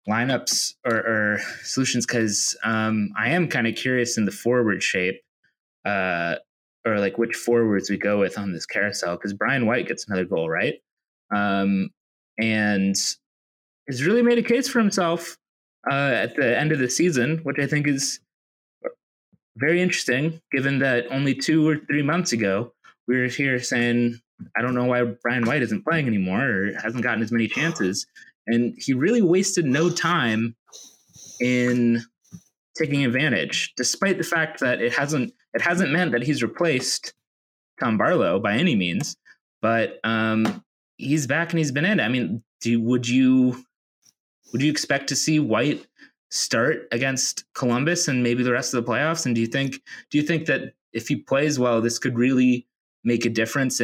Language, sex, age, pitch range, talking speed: English, male, 20-39, 110-145 Hz, 170 wpm